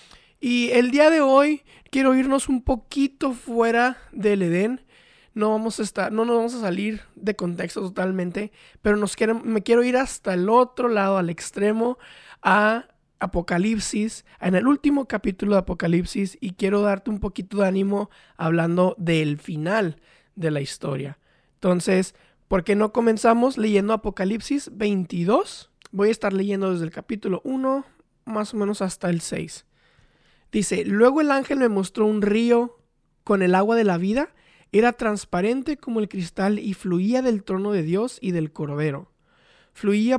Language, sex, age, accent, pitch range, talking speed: Spanish, male, 20-39, Mexican, 185-230 Hz, 160 wpm